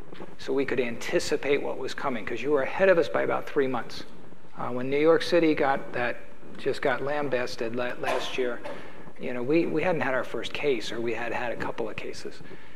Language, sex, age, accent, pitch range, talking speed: English, male, 50-69, American, 130-155 Hz, 220 wpm